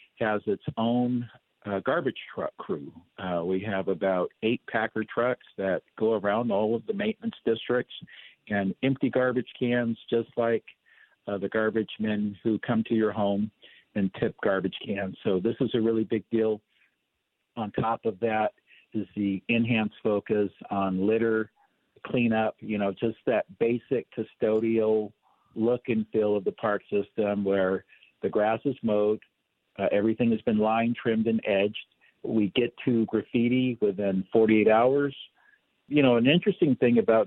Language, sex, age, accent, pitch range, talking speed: English, male, 50-69, American, 100-120 Hz, 160 wpm